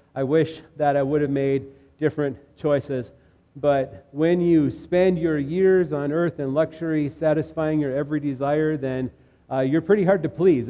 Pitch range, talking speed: 130-155 Hz, 170 wpm